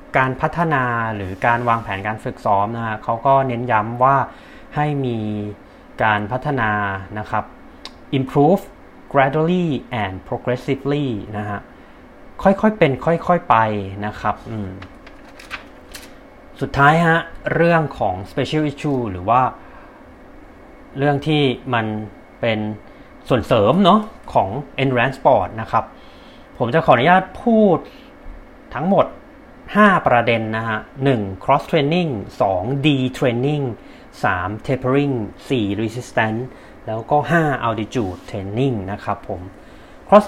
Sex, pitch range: male, 110-155 Hz